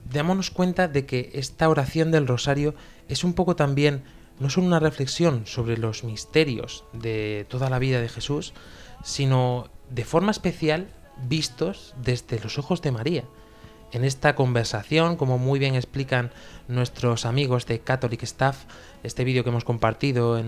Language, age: Spanish, 20-39